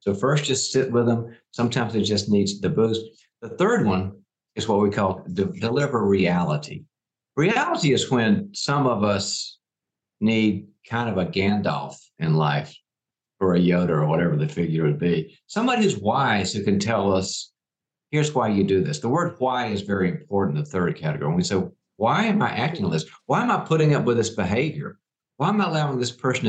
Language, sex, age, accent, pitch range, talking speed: English, male, 50-69, American, 100-135 Hz, 200 wpm